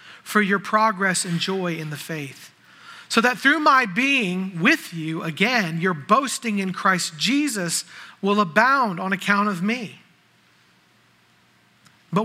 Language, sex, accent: English, male, American